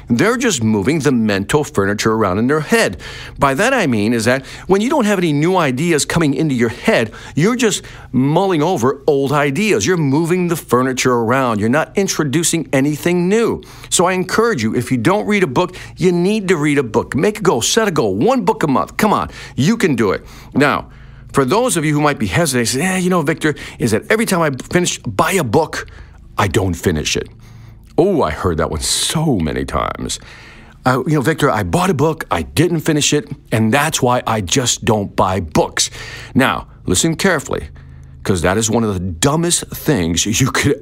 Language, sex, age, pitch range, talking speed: English, male, 50-69, 115-170 Hz, 205 wpm